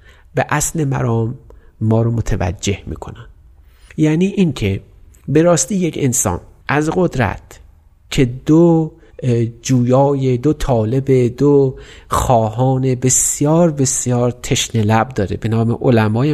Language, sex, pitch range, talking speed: Persian, male, 105-145 Hz, 115 wpm